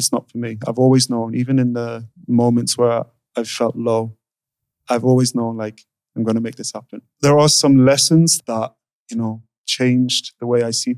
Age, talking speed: 30-49, 200 wpm